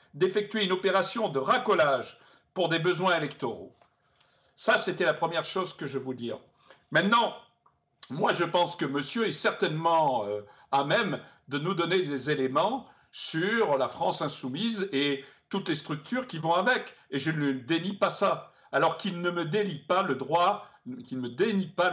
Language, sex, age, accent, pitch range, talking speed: French, male, 60-79, French, 140-190 Hz, 170 wpm